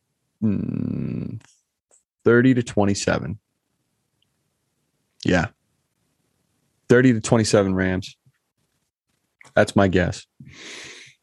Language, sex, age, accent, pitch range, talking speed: English, male, 20-39, American, 105-135 Hz, 60 wpm